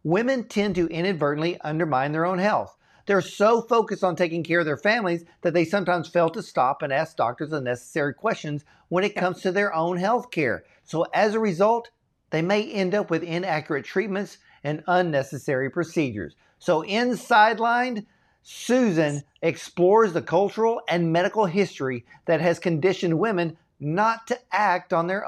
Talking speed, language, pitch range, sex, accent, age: 165 wpm, English, 150-210 Hz, male, American, 50-69